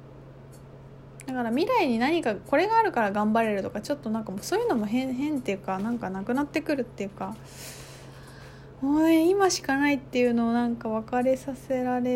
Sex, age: female, 20-39